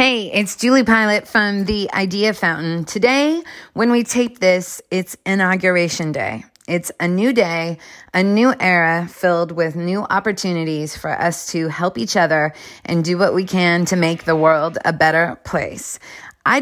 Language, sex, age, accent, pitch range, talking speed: English, female, 30-49, American, 170-210 Hz, 165 wpm